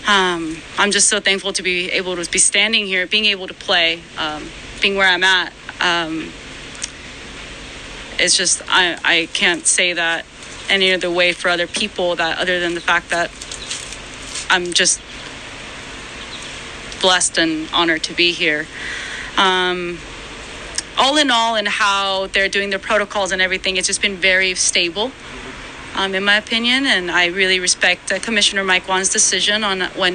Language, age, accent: English, 30-49, American